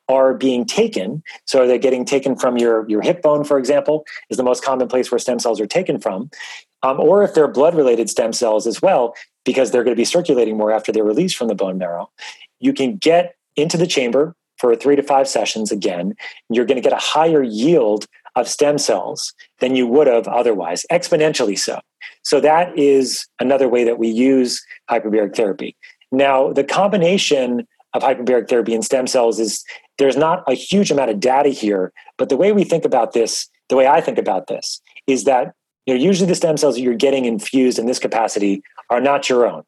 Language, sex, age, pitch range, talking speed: English, male, 30-49, 120-150 Hz, 205 wpm